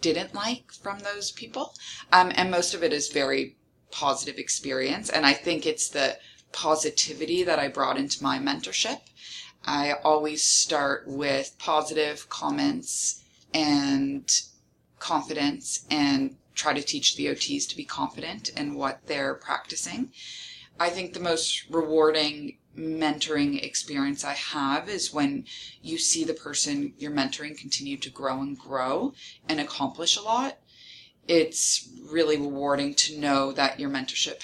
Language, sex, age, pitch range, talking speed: English, female, 30-49, 140-175 Hz, 140 wpm